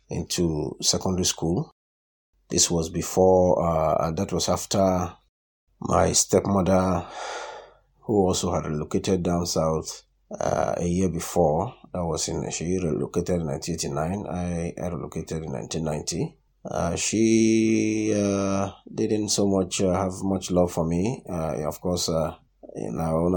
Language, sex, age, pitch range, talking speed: English, male, 30-49, 85-95 Hz, 140 wpm